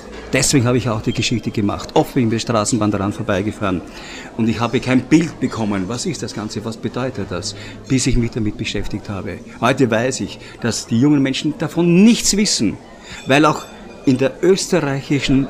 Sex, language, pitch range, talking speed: male, German, 105-140 Hz, 180 wpm